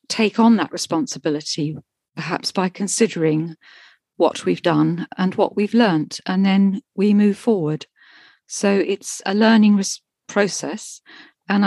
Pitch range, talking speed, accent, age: 170-210 Hz, 130 wpm, British, 50-69